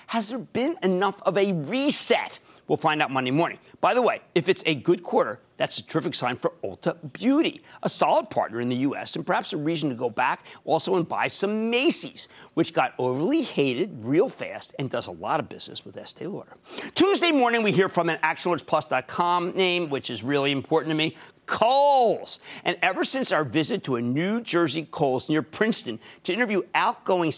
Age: 50-69